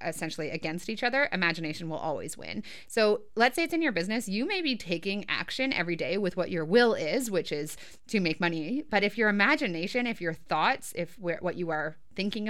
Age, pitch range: 30-49, 170-220 Hz